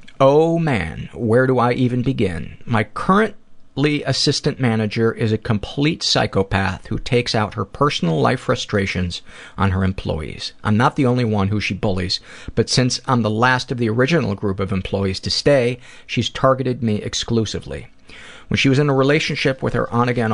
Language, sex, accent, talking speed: English, male, American, 175 wpm